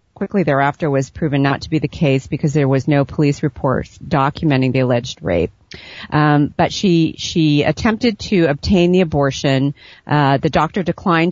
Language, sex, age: English, female, 40-59